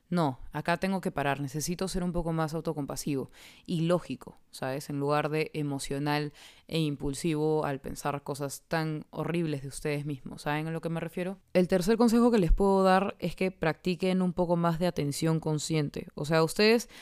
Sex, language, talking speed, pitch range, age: female, Spanish, 185 wpm, 150-175 Hz, 20-39